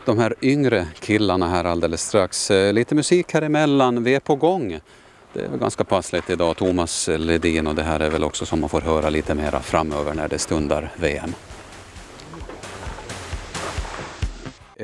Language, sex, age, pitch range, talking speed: Swedish, male, 30-49, 80-115 Hz, 160 wpm